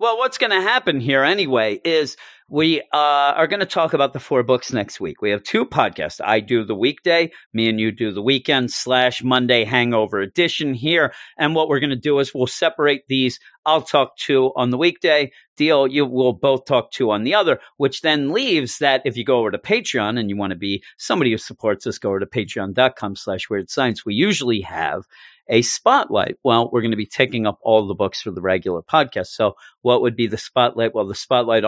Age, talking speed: 40-59, 225 wpm